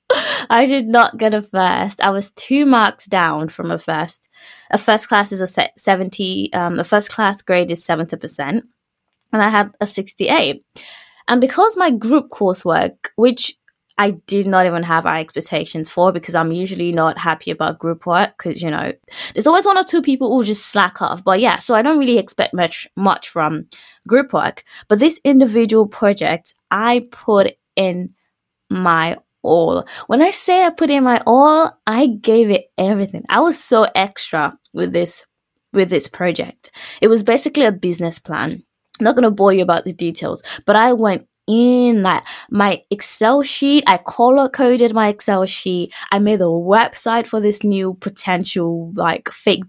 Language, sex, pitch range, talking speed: English, female, 185-240 Hz, 180 wpm